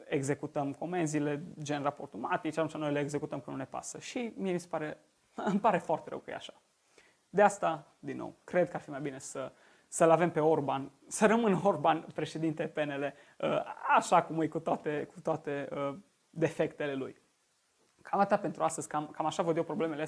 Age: 20-39